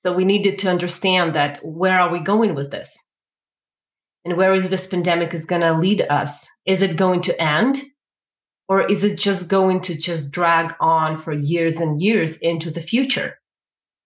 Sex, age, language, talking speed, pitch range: female, 30-49, English, 185 wpm, 155-190 Hz